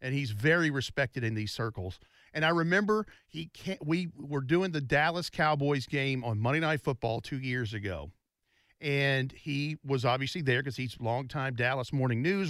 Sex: male